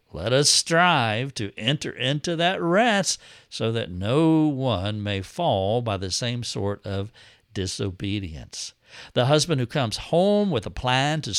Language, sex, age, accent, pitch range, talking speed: English, male, 60-79, American, 110-145 Hz, 155 wpm